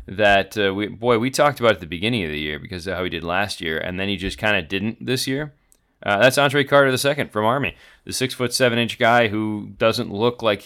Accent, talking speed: American, 260 wpm